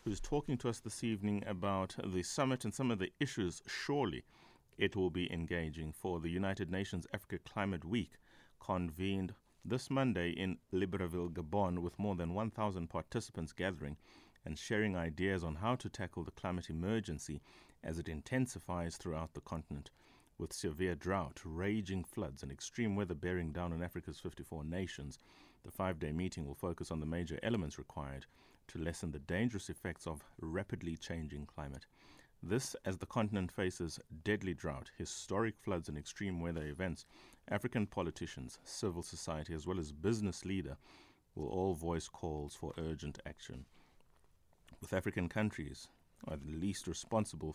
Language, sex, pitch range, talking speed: English, male, 80-100 Hz, 155 wpm